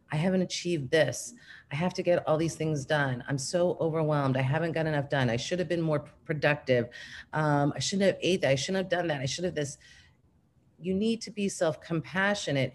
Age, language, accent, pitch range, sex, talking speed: 40-59, English, American, 140-180 Hz, female, 215 wpm